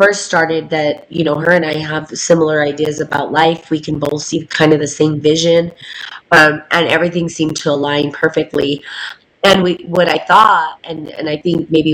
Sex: female